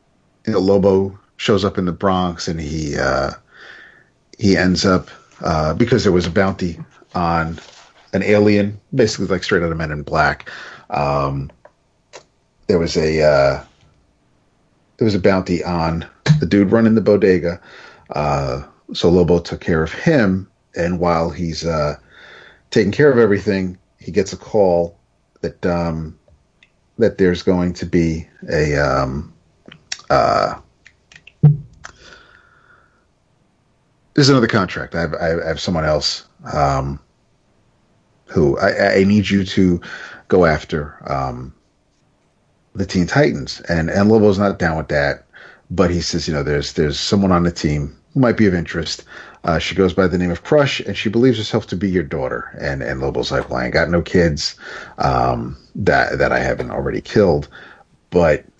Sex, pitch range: male, 75-100 Hz